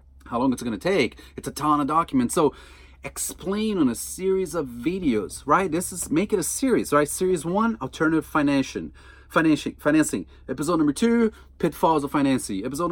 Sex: male